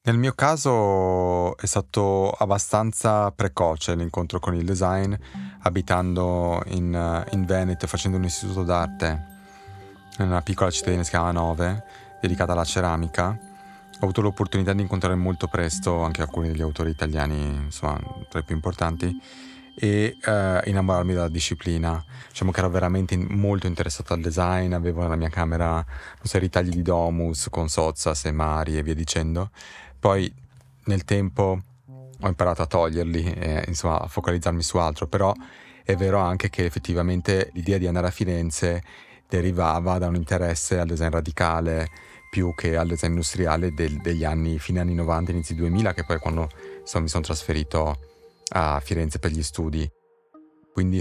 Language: Italian